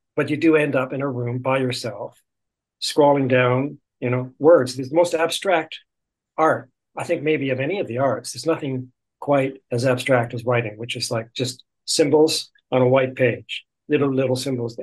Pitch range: 120-135 Hz